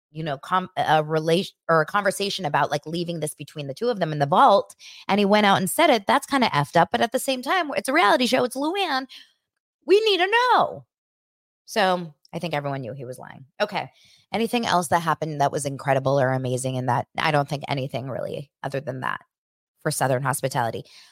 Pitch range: 145-220 Hz